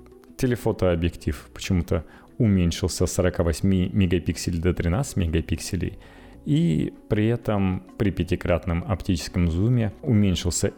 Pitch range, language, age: 80-105 Hz, Russian, 30-49